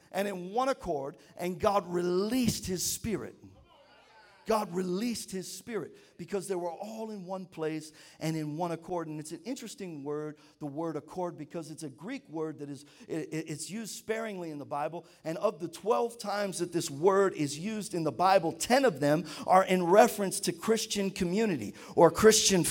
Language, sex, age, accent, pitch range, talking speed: English, male, 50-69, American, 180-235 Hz, 180 wpm